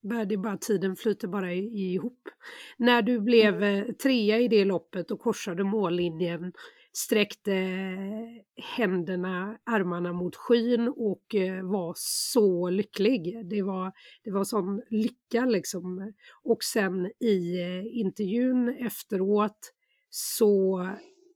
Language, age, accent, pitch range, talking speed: English, 40-59, Swedish, 195-235 Hz, 105 wpm